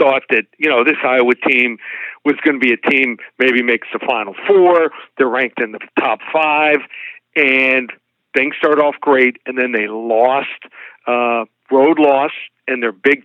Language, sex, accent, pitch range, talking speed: English, male, American, 125-150 Hz, 175 wpm